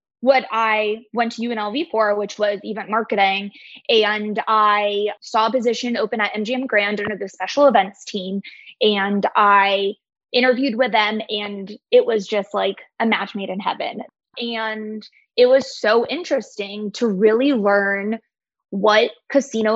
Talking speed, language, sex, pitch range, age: 150 wpm, English, female, 210-255 Hz, 20-39